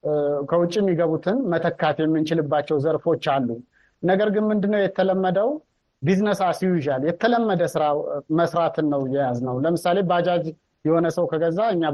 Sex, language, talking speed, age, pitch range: male, Amharic, 110 wpm, 30-49, 150-185 Hz